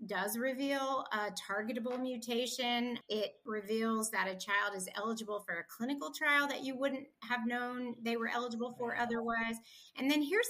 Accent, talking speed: American, 165 wpm